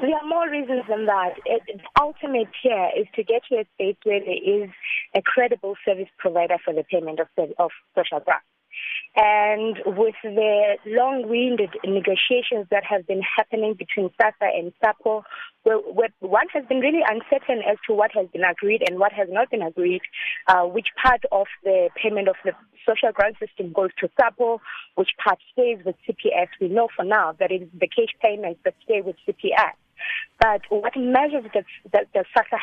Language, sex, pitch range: English, female, 190-235 Hz